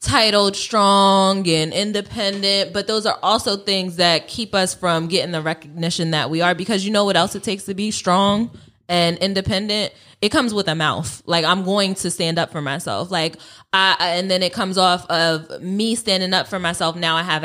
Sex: female